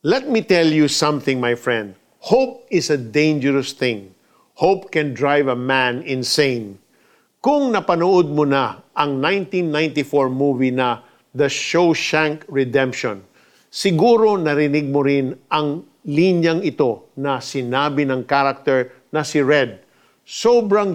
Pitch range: 135-180 Hz